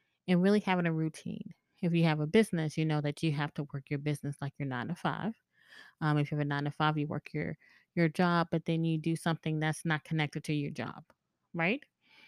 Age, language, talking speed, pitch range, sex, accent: 20-39, English, 240 wpm, 155-185 Hz, female, American